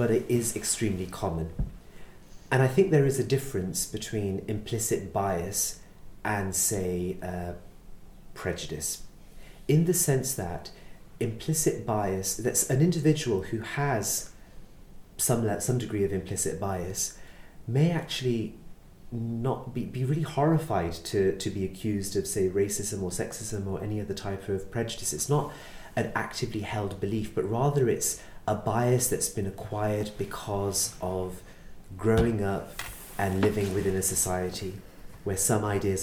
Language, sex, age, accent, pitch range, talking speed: English, male, 30-49, British, 95-120 Hz, 140 wpm